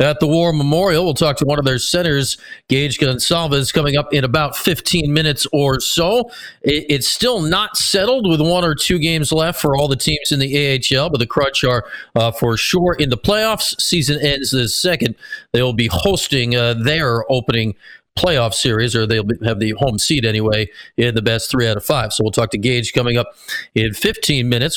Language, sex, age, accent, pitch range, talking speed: English, male, 40-59, American, 125-170 Hz, 205 wpm